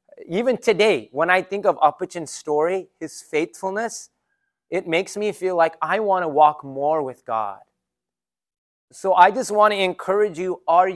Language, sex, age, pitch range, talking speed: English, male, 30-49, 145-210 Hz, 165 wpm